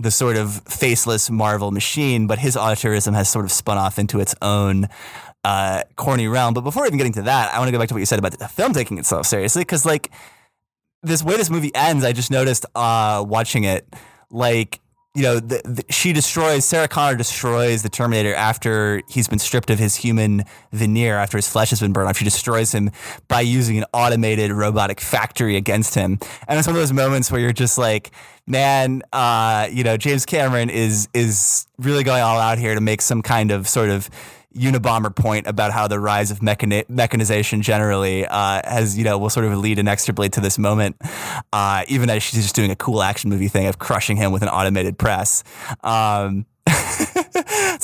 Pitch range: 105-130 Hz